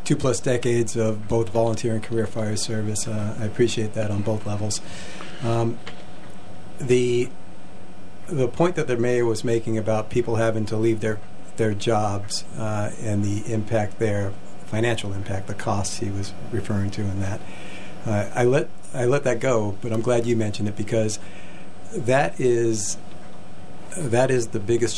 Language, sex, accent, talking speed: English, male, American, 165 wpm